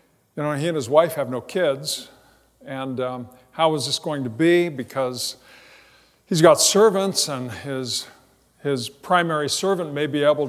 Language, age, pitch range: English, 50-69, 125-155 Hz